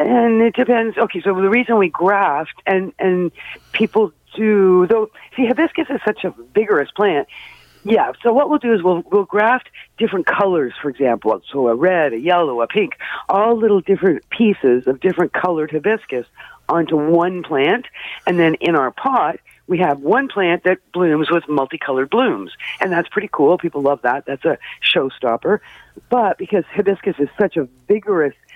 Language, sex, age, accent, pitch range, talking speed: English, female, 50-69, American, 145-205 Hz, 175 wpm